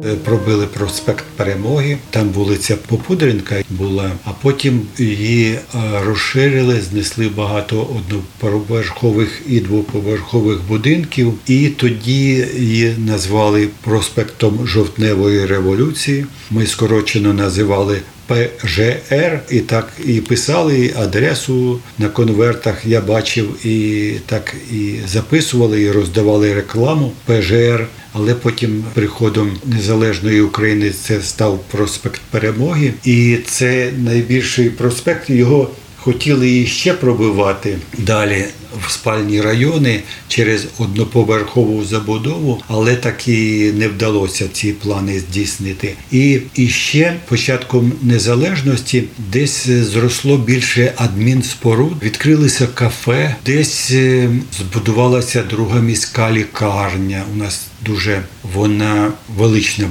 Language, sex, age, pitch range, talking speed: Ukrainian, male, 50-69, 105-125 Hz, 100 wpm